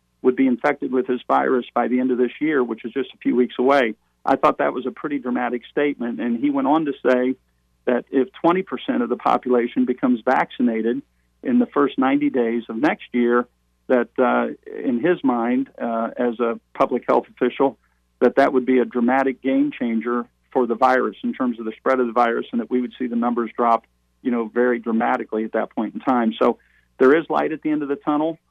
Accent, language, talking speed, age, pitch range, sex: American, English, 225 wpm, 50-69, 120-140 Hz, male